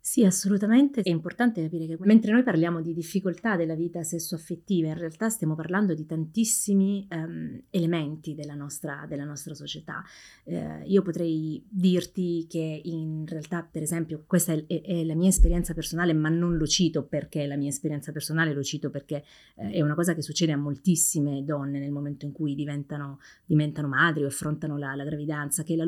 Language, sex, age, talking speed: Italian, female, 30-49, 185 wpm